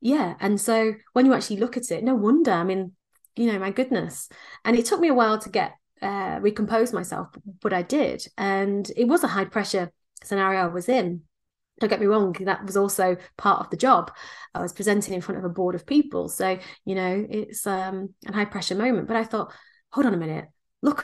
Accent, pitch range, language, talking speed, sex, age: British, 190-235 Hz, English, 225 wpm, female, 30-49